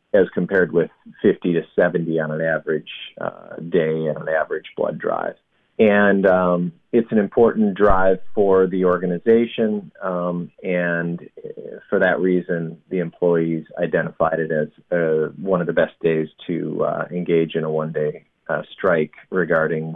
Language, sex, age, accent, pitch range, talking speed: English, male, 40-59, American, 85-110 Hz, 150 wpm